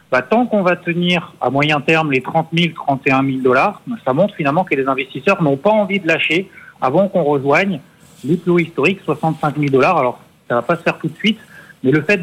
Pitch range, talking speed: 145-180 Hz, 230 wpm